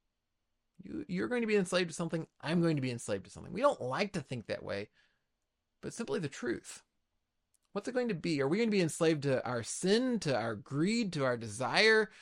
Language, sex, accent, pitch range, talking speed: English, male, American, 135-185 Hz, 220 wpm